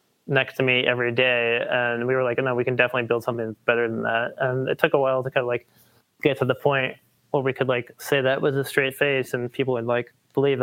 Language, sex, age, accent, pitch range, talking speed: English, male, 30-49, American, 125-140 Hz, 260 wpm